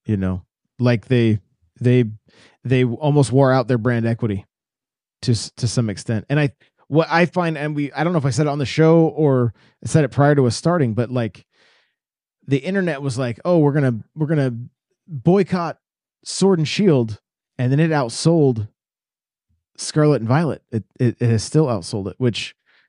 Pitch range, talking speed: 110-145 Hz, 190 wpm